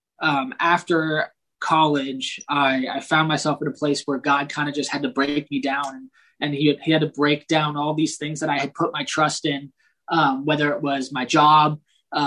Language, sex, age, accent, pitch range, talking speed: English, male, 20-39, American, 140-160 Hz, 215 wpm